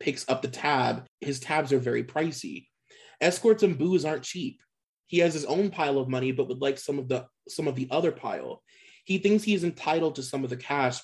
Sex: male